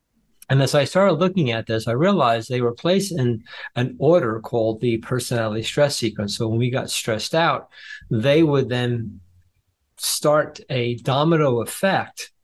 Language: English